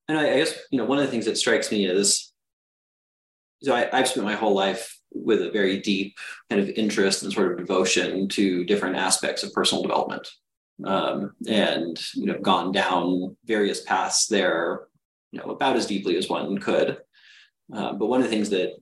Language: English